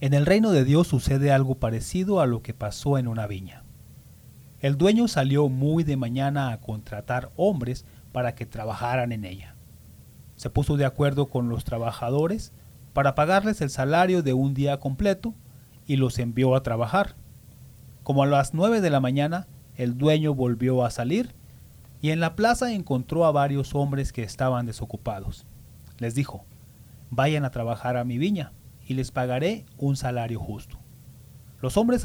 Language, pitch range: English, 125-150 Hz